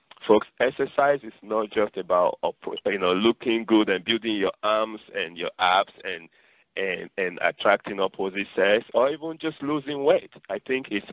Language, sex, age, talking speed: English, male, 50-69, 160 wpm